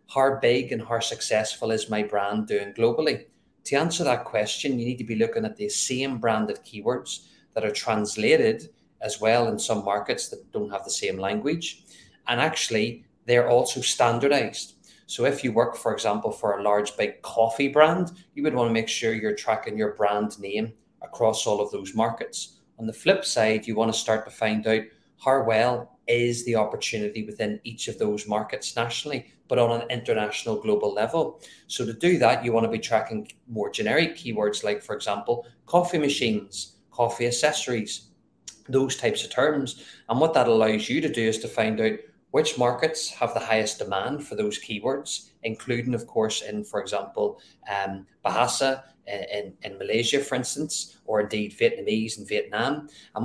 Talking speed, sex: 180 wpm, male